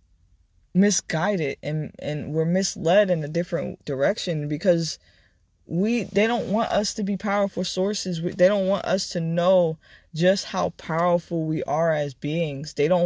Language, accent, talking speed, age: English, American, 160 wpm, 20-39